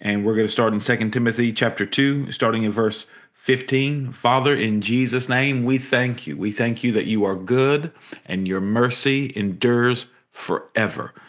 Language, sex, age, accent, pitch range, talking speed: English, male, 40-59, American, 110-130 Hz, 175 wpm